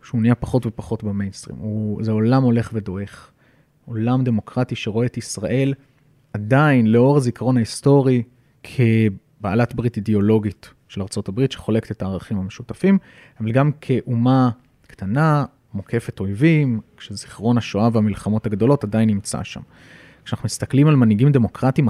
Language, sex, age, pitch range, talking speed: Hebrew, male, 30-49, 110-135 Hz, 125 wpm